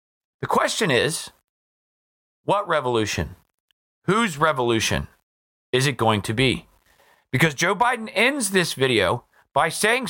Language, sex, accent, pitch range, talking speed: English, male, American, 125-185 Hz, 120 wpm